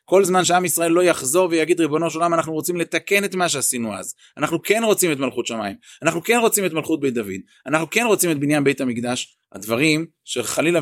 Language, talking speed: Hebrew, 215 wpm